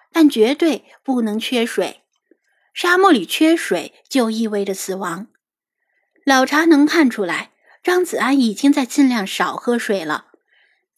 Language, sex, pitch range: Chinese, female, 210-285 Hz